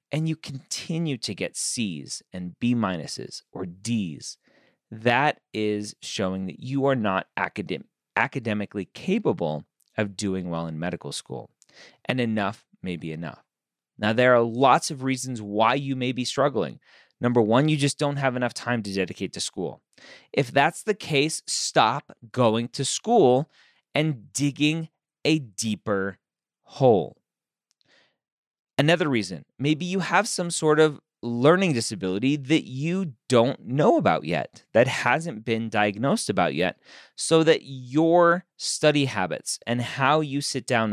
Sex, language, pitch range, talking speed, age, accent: male, English, 110-160 Hz, 145 wpm, 30-49, American